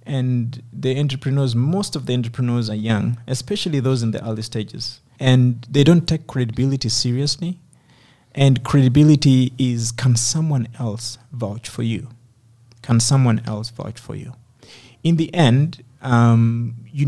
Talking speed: 145 wpm